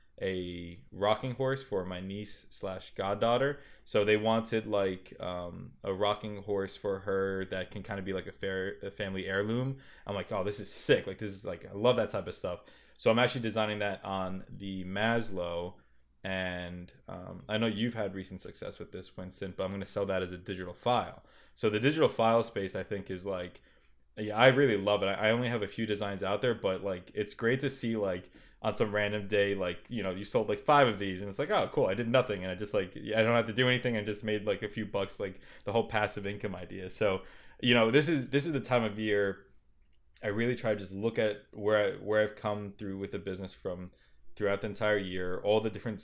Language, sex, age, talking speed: English, male, 20-39, 235 wpm